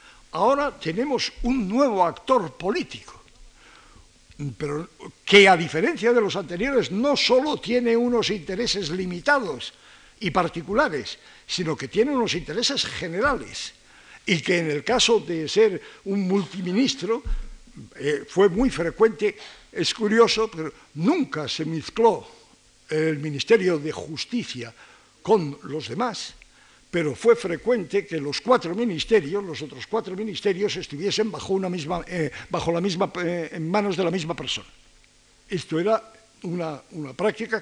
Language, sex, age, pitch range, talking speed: Spanish, male, 60-79, 160-230 Hz, 130 wpm